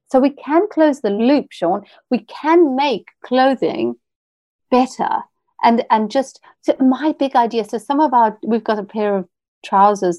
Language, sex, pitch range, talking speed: English, female, 200-250 Hz, 165 wpm